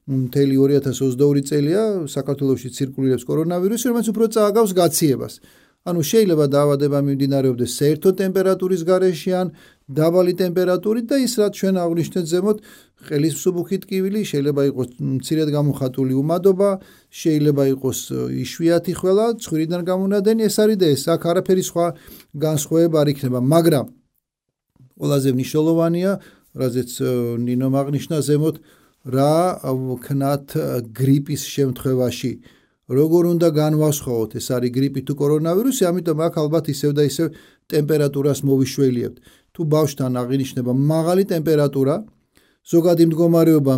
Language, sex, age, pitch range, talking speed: English, male, 40-59, 135-175 Hz, 90 wpm